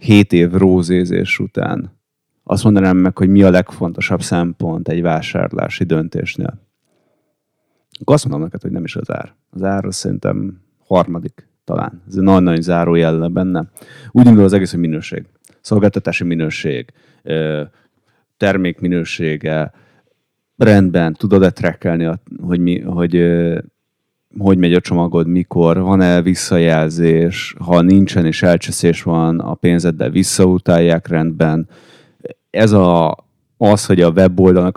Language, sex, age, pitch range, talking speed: Hungarian, male, 30-49, 85-95 Hz, 125 wpm